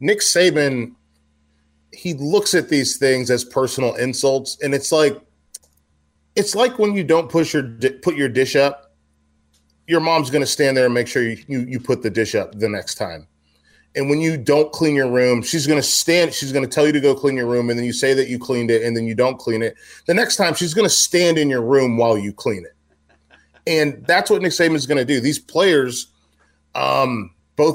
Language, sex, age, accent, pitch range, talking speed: English, male, 30-49, American, 115-150 Hz, 220 wpm